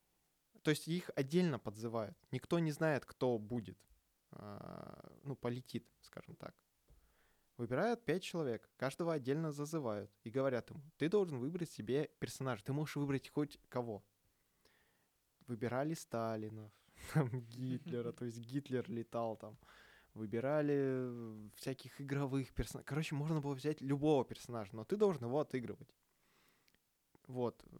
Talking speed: 125 wpm